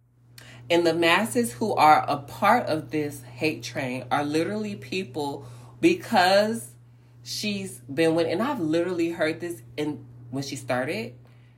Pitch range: 120-180 Hz